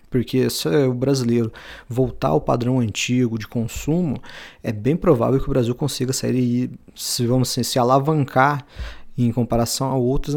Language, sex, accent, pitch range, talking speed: Portuguese, male, Brazilian, 120-150 Hz, 170 wpm